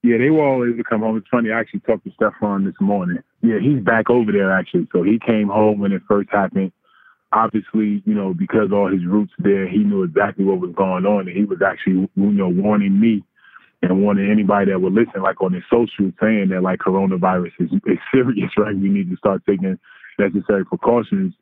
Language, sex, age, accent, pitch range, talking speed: English, male, 20-39, American, 95-115 Hz, 220 wpm